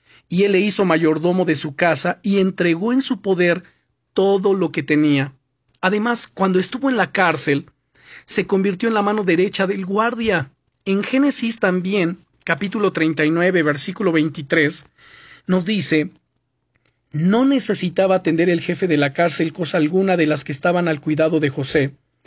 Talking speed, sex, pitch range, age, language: 155 wpm, male, 160-200 Hz, 40-59, Spanish